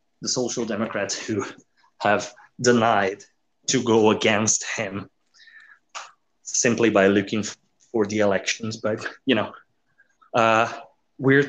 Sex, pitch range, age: male, 105-125 Hz, 20-39